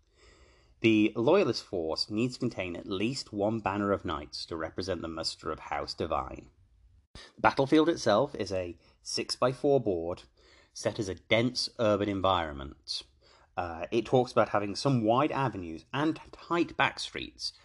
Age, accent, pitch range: 30-49, British, 90-120 Hz